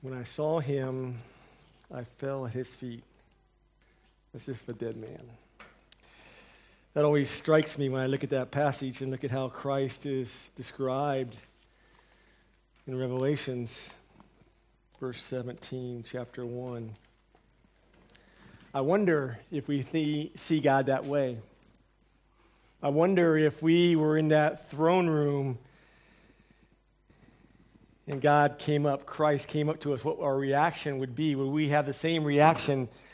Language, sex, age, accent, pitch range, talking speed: English, male, 40-59, American, 130-155 Hz, 135 wpm